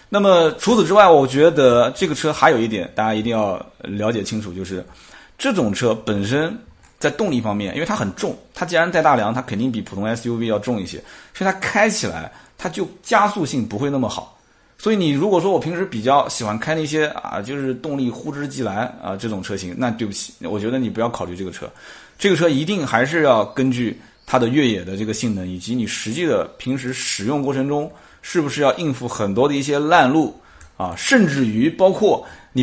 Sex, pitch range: male, 110-160 Hz